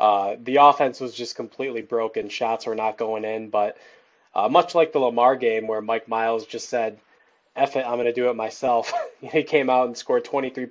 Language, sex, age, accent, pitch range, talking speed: English, male, 20-39, American, 115-150 Hz, 215 wpm